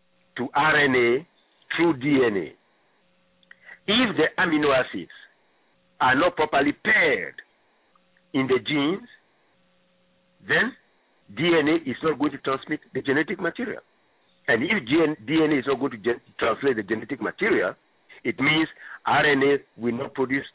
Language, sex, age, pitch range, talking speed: English, male, 50-69, 110-165 Hz, 125 wpm